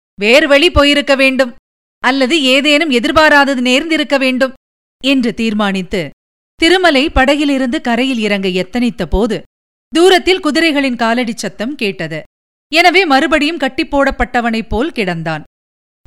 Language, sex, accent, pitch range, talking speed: Tamil, female, native, 220-305 Hz, 95 wpm